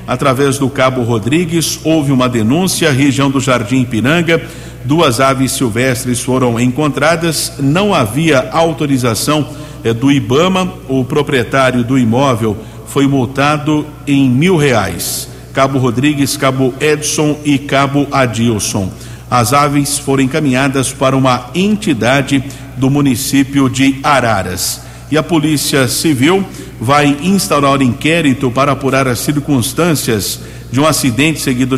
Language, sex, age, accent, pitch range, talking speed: Portuguese, male, 60-79, Brazilian, 125-150 Hz, 120 wpm